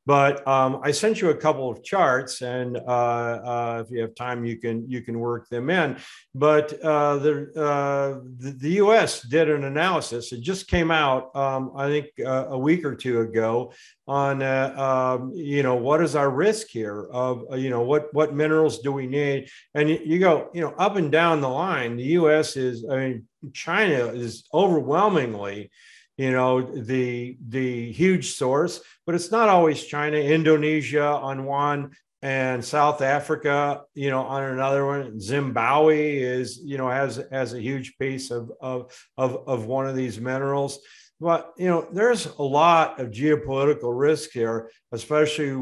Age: 50-69